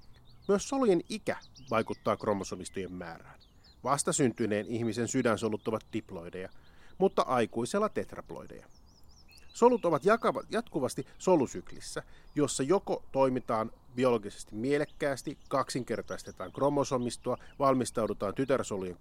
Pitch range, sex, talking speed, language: 100-140 Hz, male, 85 wpm, Finnish